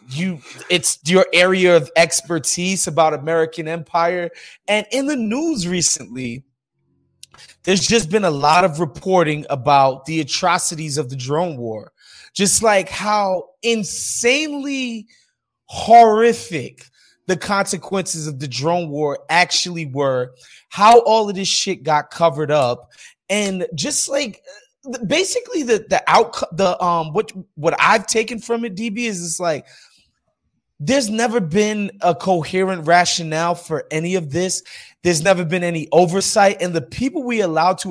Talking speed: 140 wpm